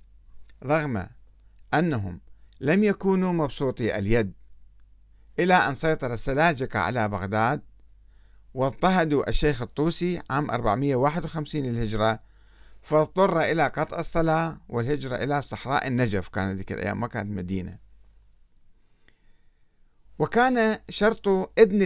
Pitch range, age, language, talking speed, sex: 105-155 Hz, 50-69, Arabic, 95 wpm, male